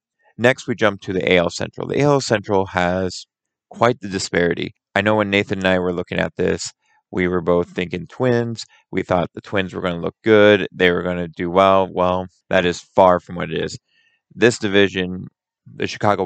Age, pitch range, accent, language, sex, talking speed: 20-39, 85-100 Hz, American, English, male, 205 wpm